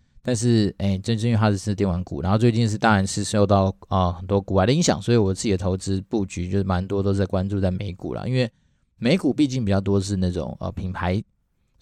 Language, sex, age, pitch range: Chinese, male, 20-39, 95-110 Hz